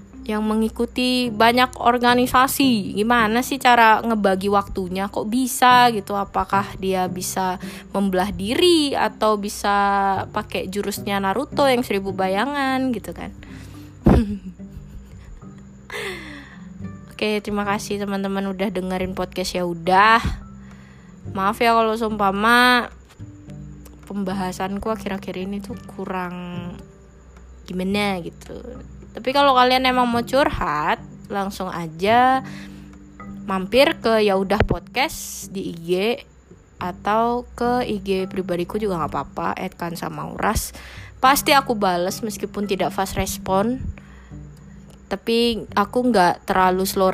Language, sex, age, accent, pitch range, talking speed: Indonesian, female, 20-39, native, 180-225 Hz, 110 wpm